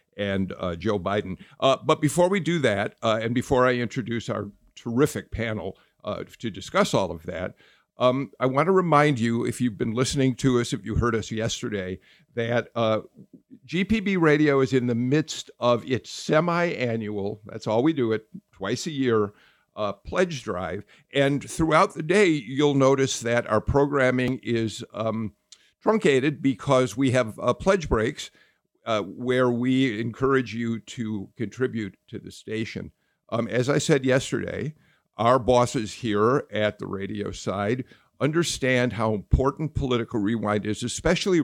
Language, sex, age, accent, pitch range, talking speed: English, male, 50-69, American, 105-135 Hz, 160 wpm